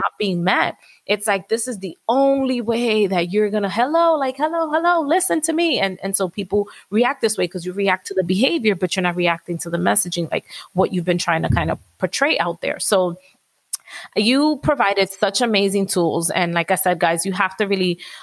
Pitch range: 175-215 Hz